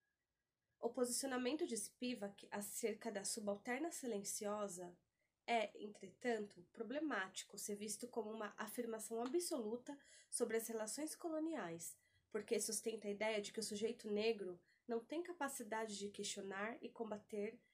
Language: Portuguese